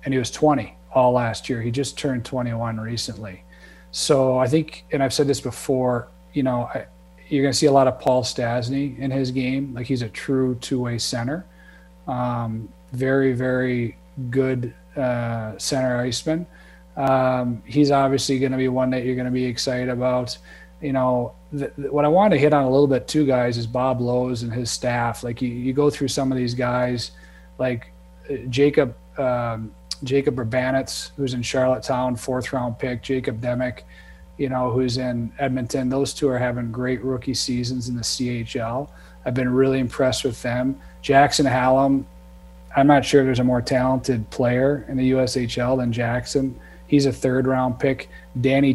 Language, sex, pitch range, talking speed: English, male, 120-135 Hz, 175 wpm